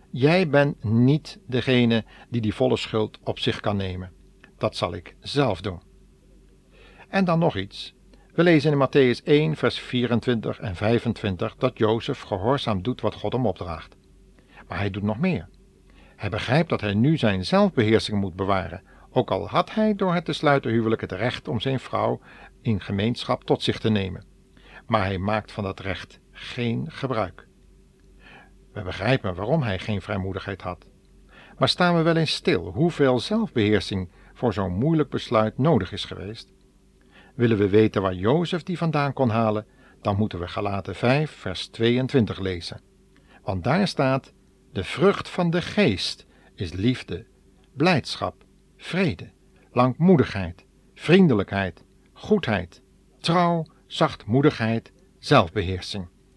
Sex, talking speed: male, 145 wpm